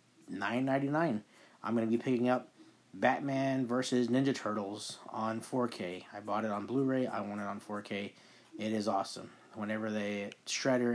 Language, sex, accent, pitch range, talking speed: English, male, American, 105-130 Hz, 160 wpm